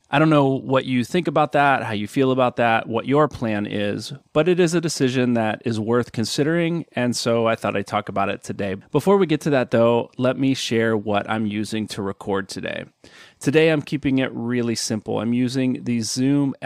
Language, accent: English, American